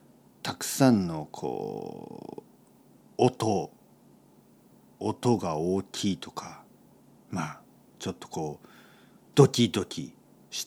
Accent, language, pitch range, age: native, Japanese, 90-140 Hz, 50-69